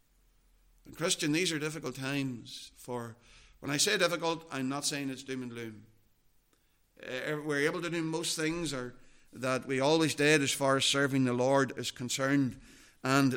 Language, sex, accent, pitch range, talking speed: English, male, Irish, 130-170 Hz, 160 wpm